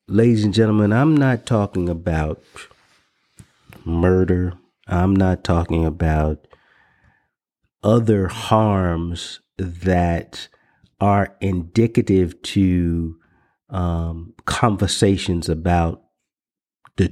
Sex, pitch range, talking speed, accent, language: male, 90-115 Hz, 75 wpm, American, English